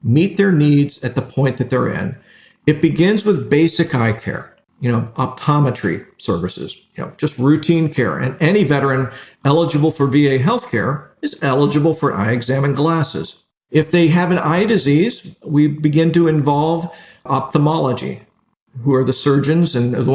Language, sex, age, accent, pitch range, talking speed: English, male, 50-69, American, 135-165 Hz, 160 wpm